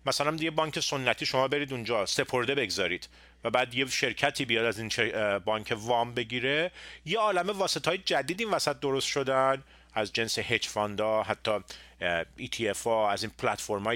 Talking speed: 165 wpm